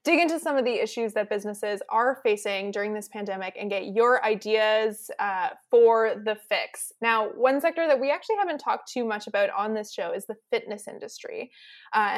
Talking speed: 195 wpm